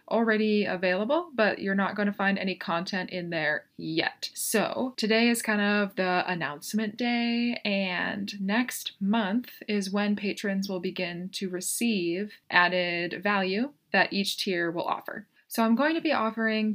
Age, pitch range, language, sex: 20-39, 185-230 Hz, English, female